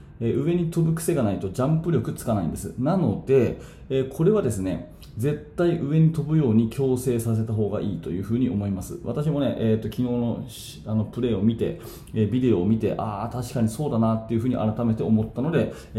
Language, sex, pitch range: Japanese, male, 110-155 Hz